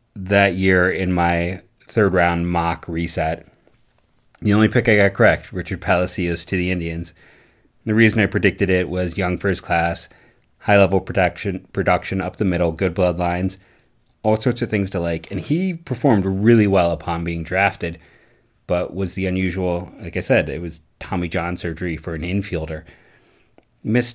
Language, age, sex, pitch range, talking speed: English, 30-49, male, 85-100 Hz, 165 wpm